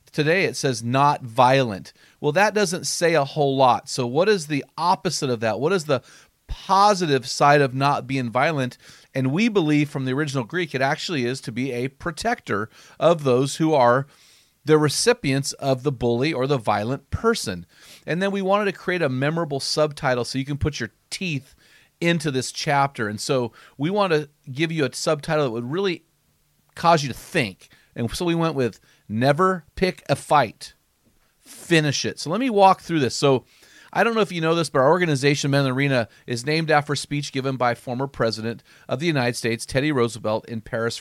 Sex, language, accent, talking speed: male, English, American, 200 wpm